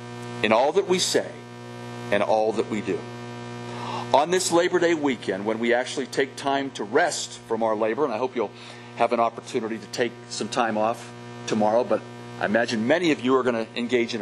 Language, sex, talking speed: English, male, 205 wpm